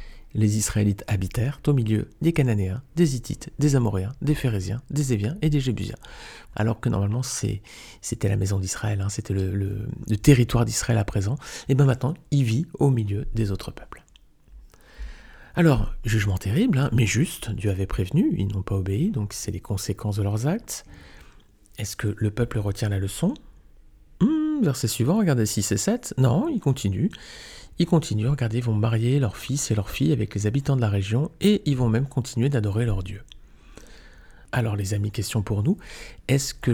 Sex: male